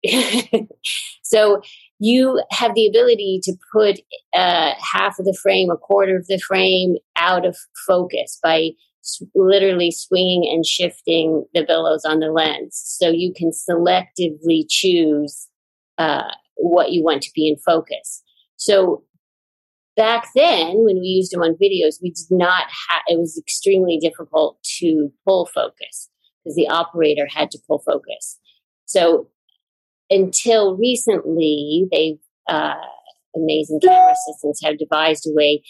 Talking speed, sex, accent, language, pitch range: 140 wpm, female, American, English, 155-195 Hz